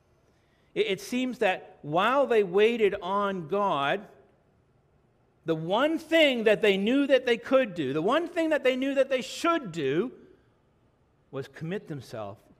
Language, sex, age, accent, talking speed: English, male, 60-79, American, 150 wpm